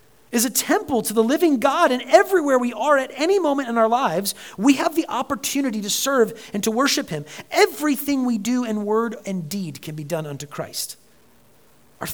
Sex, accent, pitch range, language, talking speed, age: male, American, 170-250 Hz, English, 200 wpm, 40-59